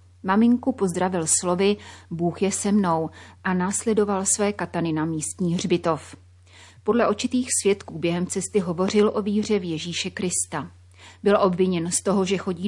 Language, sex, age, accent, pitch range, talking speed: Czech, female, 30-49, native, 160-200 Hz, 145 wpm